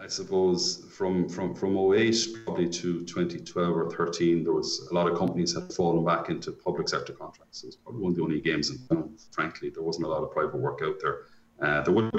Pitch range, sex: 85-110 Hz, male